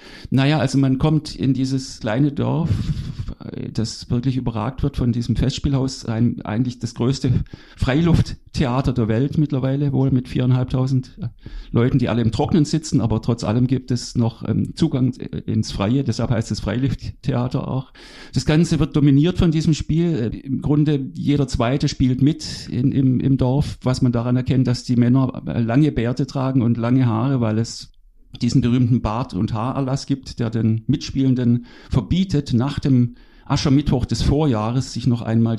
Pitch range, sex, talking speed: 115-135 Hz, male, 160 wpm